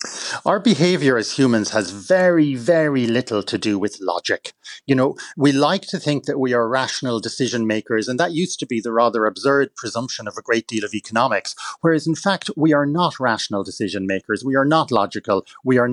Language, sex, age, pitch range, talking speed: English, male, 40-59, 115-150 Hz, 205 wpm